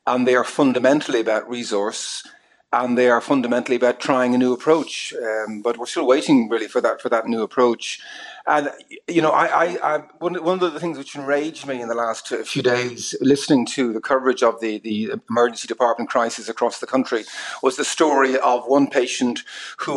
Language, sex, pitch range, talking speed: English, male, 120-155 Hz, 195 wpm